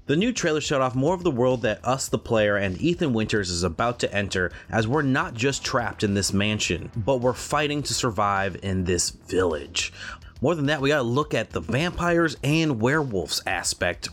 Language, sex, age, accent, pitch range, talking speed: English, male, 30-49, American, 95-135 Hz, 210 wpm